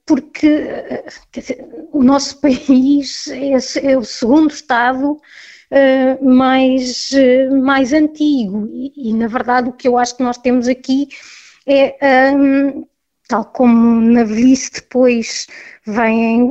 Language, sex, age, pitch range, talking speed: Portuguese, female, 20-39, 240-285 Hz, 110 wpm